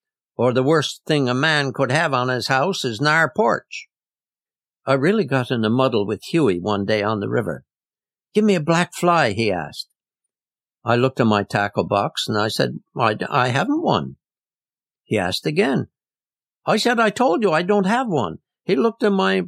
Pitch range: 115-185 Hz